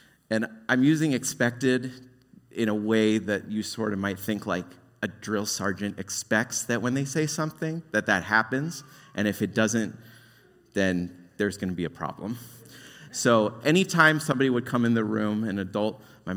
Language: English